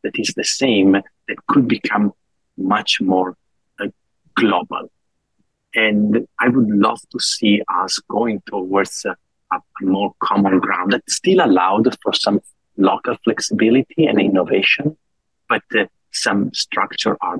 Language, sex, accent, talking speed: English, male, Italian, 135 wpm